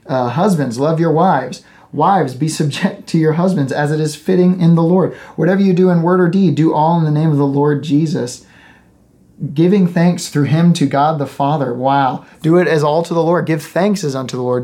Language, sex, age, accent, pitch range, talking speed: English, male, 30-49, American, 130-165 Hz, 230 wpm